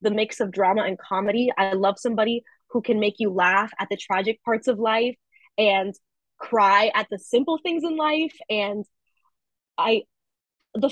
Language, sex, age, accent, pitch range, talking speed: English, female, 20-39, American, 195-240 Hz, 170 wpm